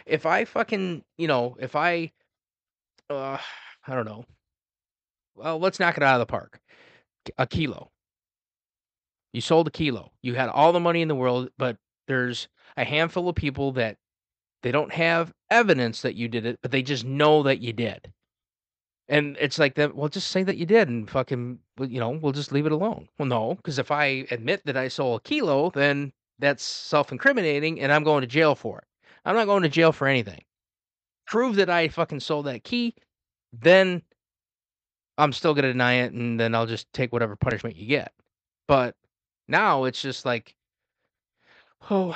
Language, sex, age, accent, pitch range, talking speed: English, male, 30-49, American, 125-170 Hz, 185 wpm